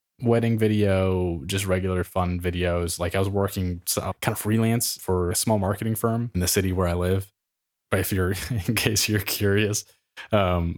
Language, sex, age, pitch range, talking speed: English, male, 20-39, 90-105 Hz, 180 wpm